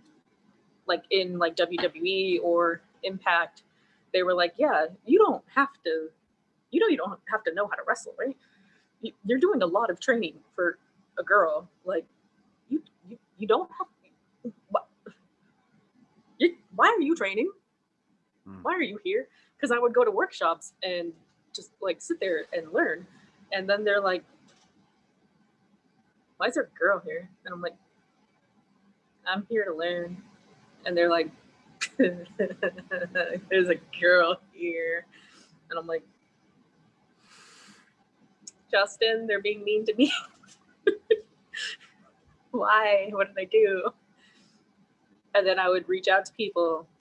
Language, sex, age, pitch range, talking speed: English, female, 20-39, 175-225 Hz, 135 wpm